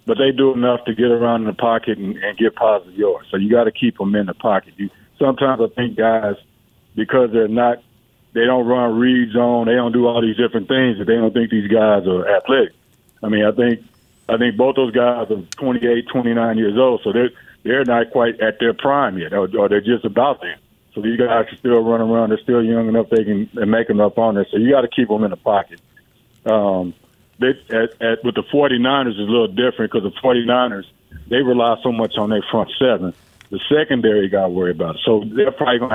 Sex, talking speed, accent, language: male, 235 wpm, American, English